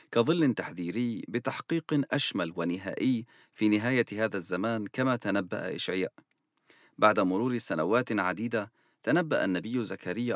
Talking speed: 110 wpm